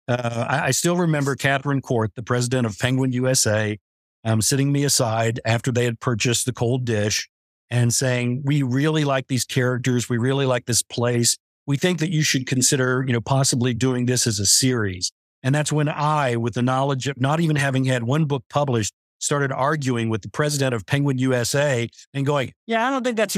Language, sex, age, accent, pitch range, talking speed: English, male, 50-69, American, 125-155 Hz, 200 wpm